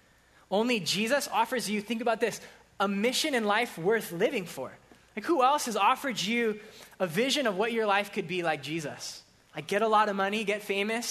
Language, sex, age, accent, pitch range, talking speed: English, male, 20-39, American, 175-220 Hz, 205 wpm